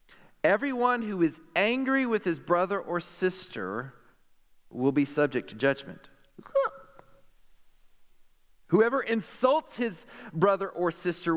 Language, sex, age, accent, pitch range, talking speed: English, male, 40-59, American, 120-185 Hz, 105 wpm